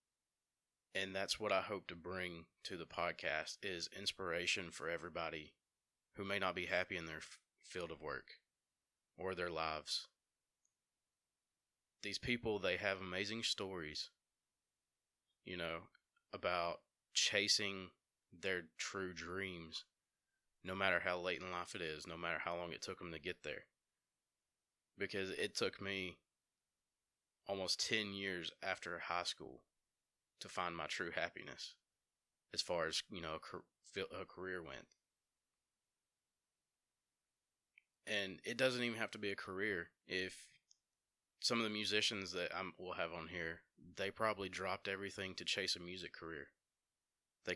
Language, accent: English, American